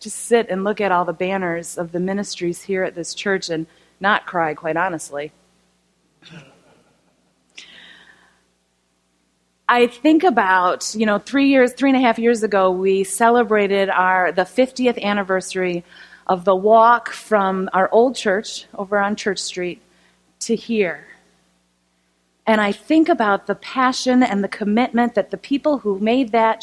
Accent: American